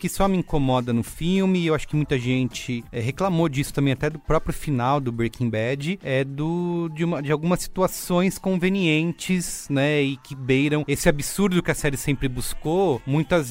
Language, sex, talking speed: English, male, 175 wpm